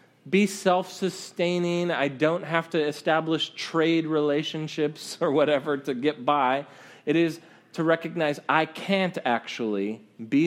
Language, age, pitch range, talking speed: English, 30-49, 130-160 Hz, 130 wpm